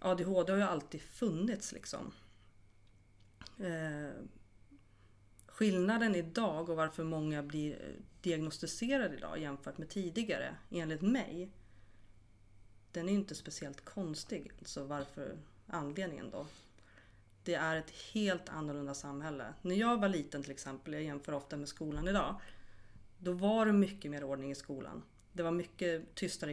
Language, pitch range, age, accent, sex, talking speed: Swedish, 140-180 Hz, 30-49, native, female, 135 wpm